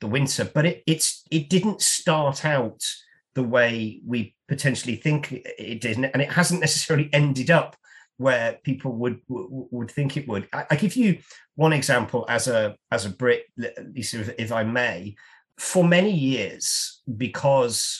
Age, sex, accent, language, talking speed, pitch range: 40-59, male, British, English, 165 wpm, 115-155 Hz